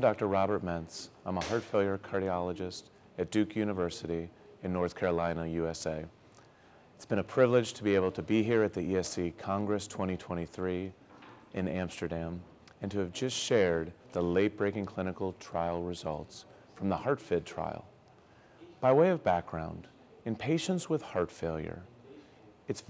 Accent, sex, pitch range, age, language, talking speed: American, male, 90-115 Hz, 30-49, English, 150 wpm